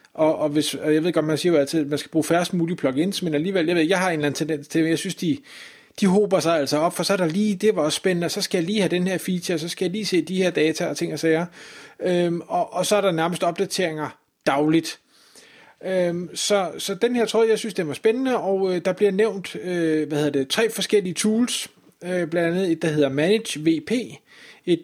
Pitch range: 150-190 Hz